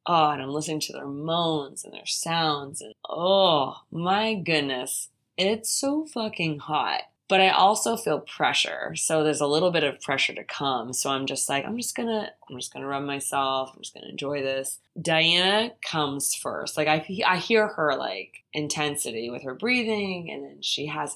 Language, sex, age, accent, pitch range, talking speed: English, female, 20-39, American, 140-190 Hz, 185 wpm